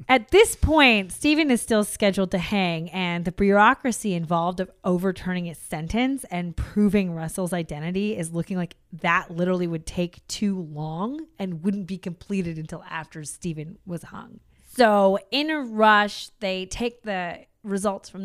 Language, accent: English, American